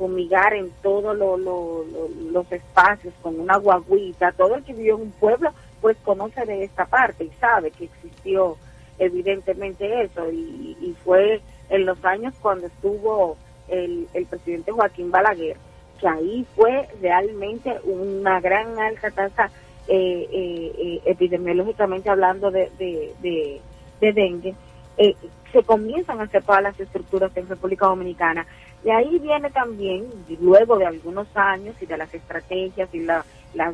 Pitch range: 180-220 Hz